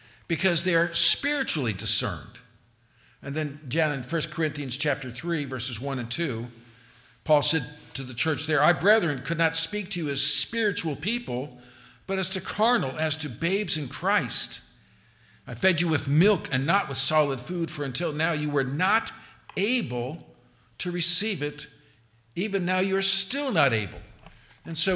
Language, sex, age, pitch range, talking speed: English, male, 50-69, 120-170 Hz, 170 wpm